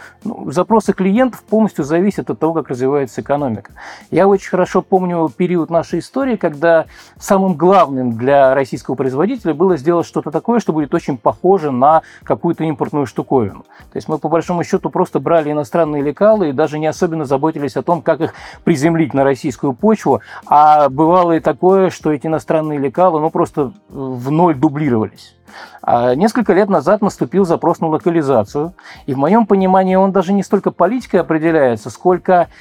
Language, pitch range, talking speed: Russian, 150-185 Hz, 165 wpm